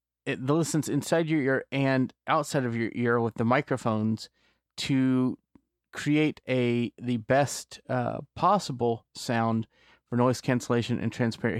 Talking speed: 135 wpm